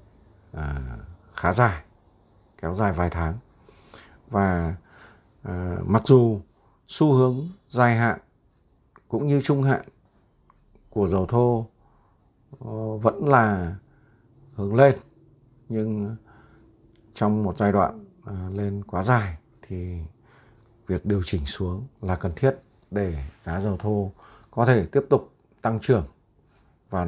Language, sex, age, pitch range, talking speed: Vietnamese, male, 60-79, 100-130 Hz, 115 wpm